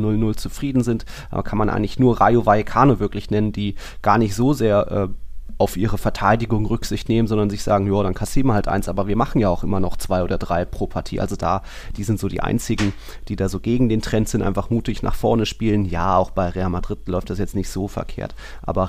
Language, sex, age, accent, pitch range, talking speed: German, male, 30-49, German, 95-120 Hz, 230 wpm